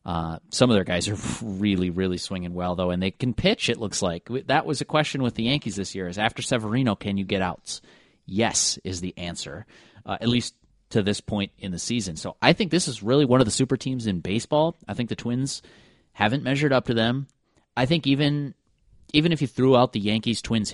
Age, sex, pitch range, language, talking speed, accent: 30-49, male, 90-125 Hz, English, 230 wpm, American